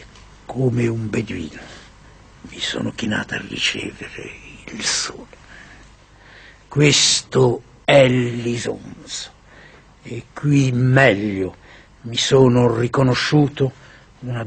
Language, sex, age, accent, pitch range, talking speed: Italian, male, 60-79, native, 115-135 Hz, 85 wpm